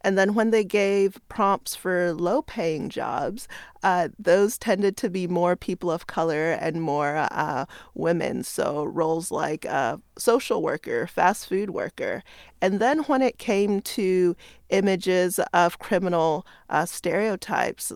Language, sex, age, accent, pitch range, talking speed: English, female, 30-49, American, 170-200 Hz, 140 wpm